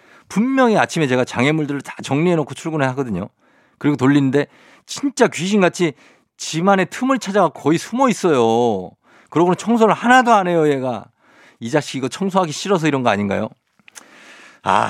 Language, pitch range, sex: Korean, 135-195 Hz, male